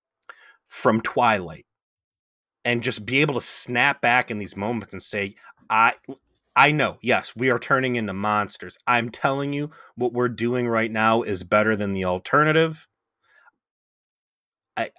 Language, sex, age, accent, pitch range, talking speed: English, male, 30-49, American, 105-125 Hz, 150 wpm